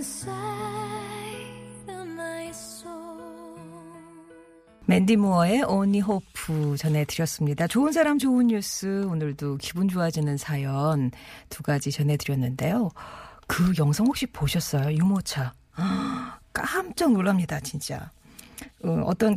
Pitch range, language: 160-245 Hz, Korean